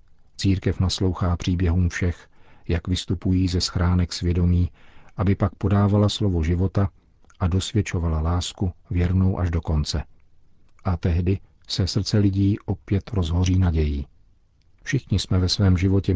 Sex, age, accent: male, 50-69, native